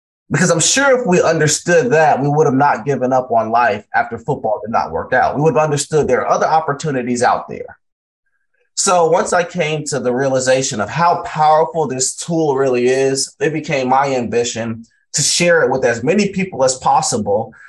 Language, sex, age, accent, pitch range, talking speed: English, male, 30-49, American, 105-150 Hz, 195 wpm